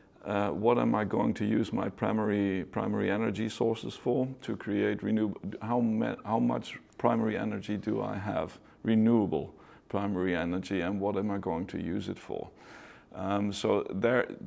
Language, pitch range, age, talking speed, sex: English, 105-115 Hz, 50-69, 165 wpm, male